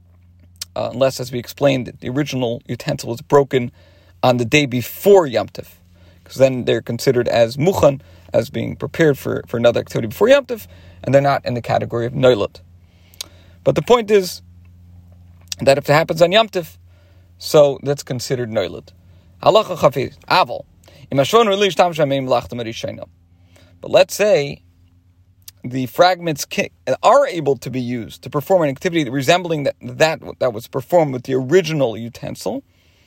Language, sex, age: English, male, 40-59